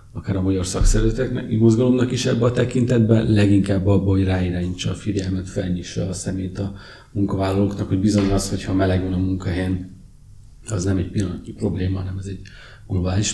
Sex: male